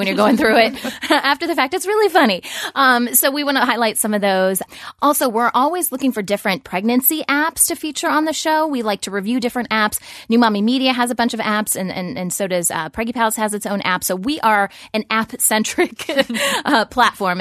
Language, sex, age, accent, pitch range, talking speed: English, female, 20-39, American, 190-245 Hz, 230 wpm